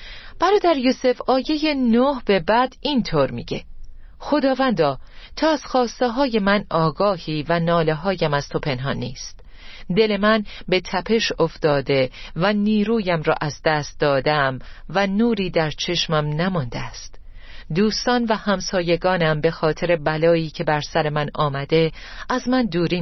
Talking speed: 140 wpm